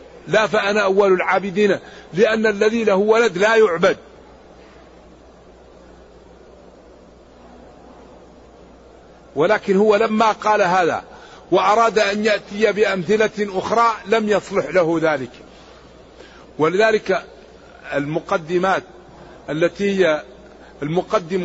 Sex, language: male, Arabic